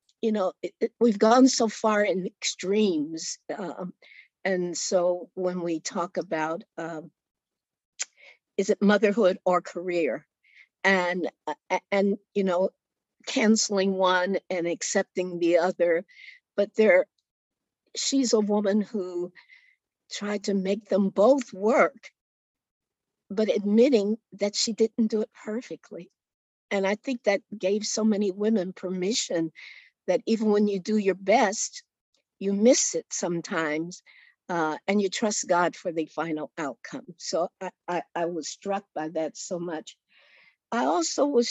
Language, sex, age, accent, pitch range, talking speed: English, female, 60-79, American, 180-225 Hz, 135 wpm